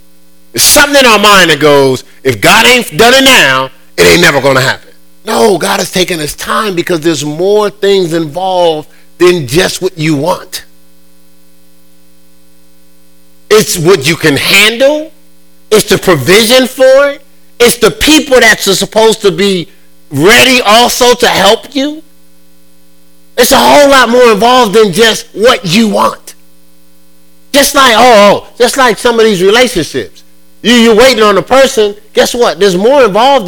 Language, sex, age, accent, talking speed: English, male, 40-59, American, 160 wpm